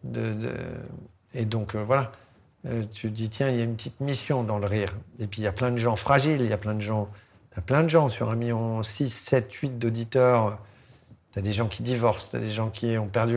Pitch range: 110-135 Hz